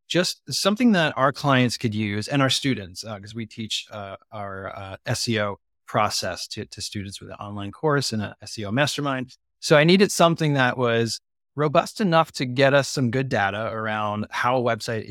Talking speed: 190 wpm